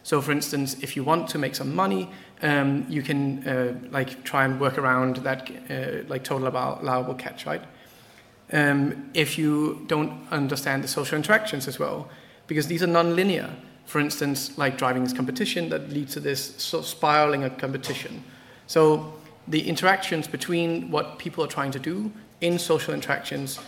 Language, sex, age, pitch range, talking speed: English, male, 30-49, 135-160 Hz, 170 wpm